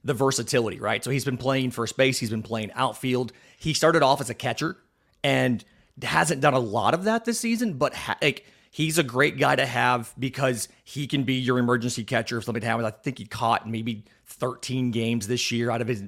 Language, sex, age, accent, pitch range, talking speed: English, male, 30-49, American, 115-140 Hz, 220 wpm